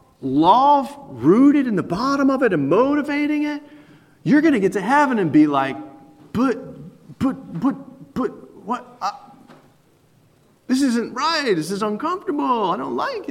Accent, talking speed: American, 155 wpm